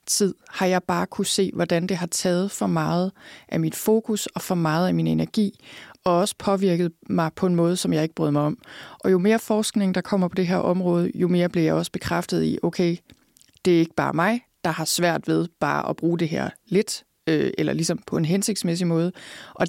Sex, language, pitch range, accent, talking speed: female, Danish, 160-190 Hz, native, 220 wpm